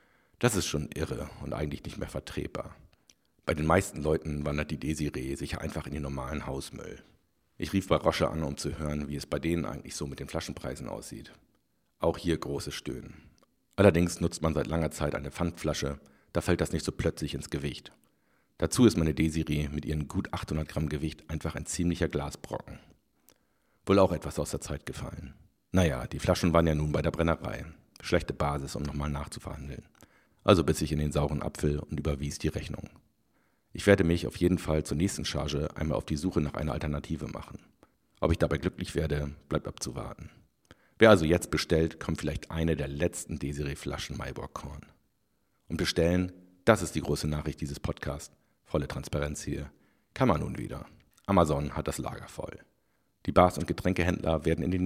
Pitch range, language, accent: 75-85 Hz, German, German